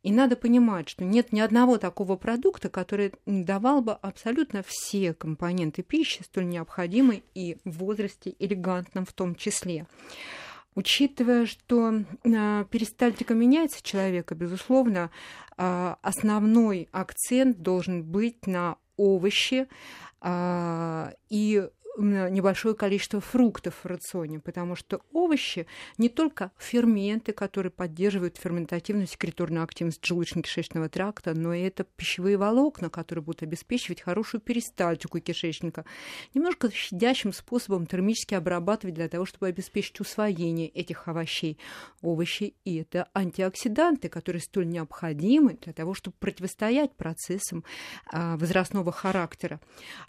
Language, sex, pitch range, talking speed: Russian, female, 175-215 Hz, 110 wpm